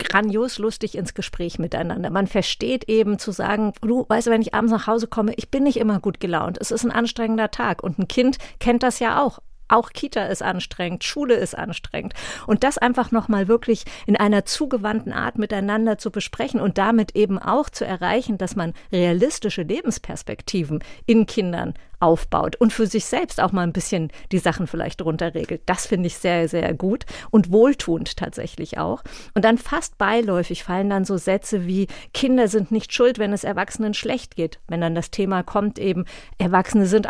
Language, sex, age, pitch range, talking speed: German, female, 50-69, 175-225 Hz, 190 wpm